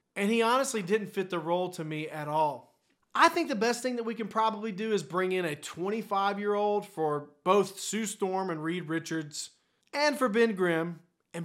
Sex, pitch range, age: male, 170-235 Hz, 30-49